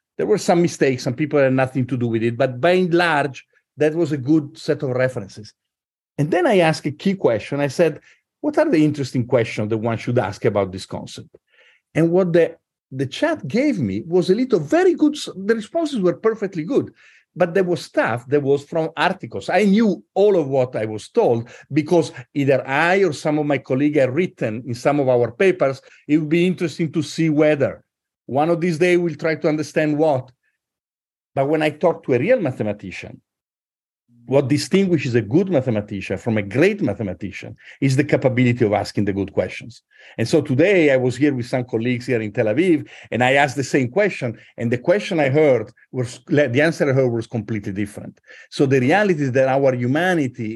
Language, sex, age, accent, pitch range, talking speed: English, male, 50-69, Italian, 125-170 Hz, 205 wpm